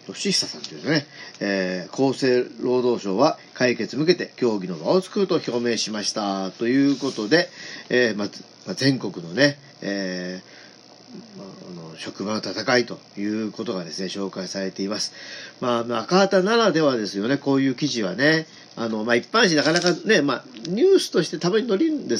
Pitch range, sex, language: 105-150 Hz, male, Japanese